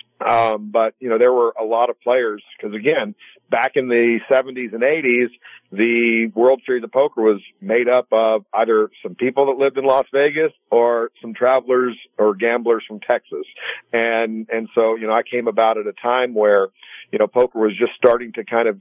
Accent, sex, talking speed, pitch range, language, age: American, male, 200 wpm, 110-130 Hz, English, 50-69